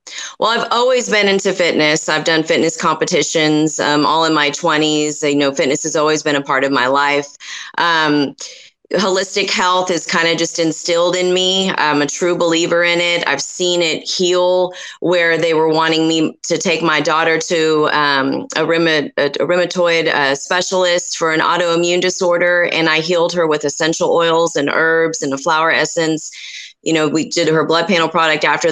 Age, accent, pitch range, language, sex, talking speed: 30-49, American, 155-175 Hz, English, female, 185 wpm